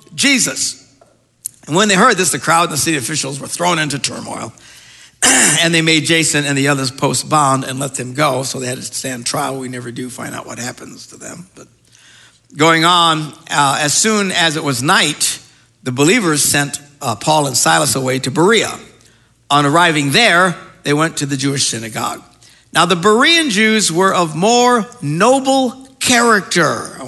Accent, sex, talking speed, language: American, male, 185 wpm, English